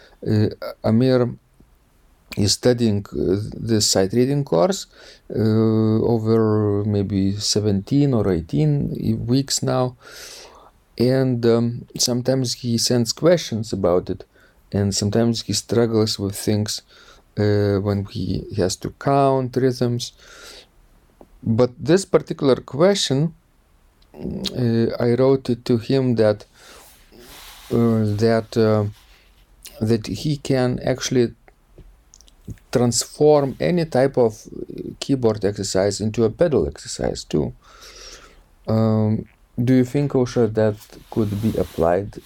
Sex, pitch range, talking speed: male, 105-125 Hz, 100 wpm